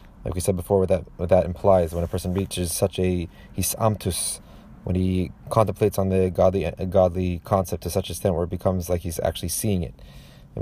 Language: English